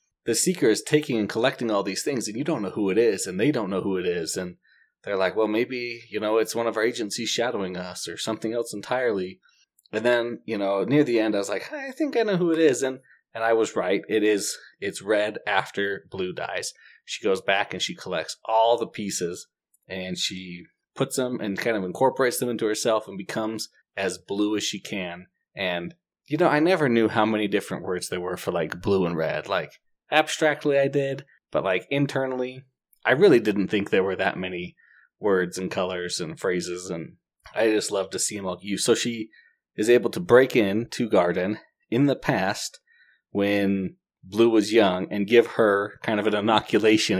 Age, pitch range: 20-39, 95-125 Hz